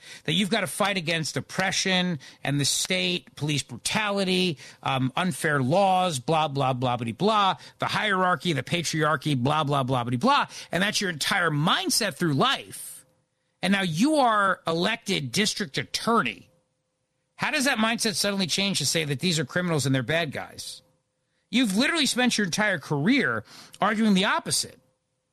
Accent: American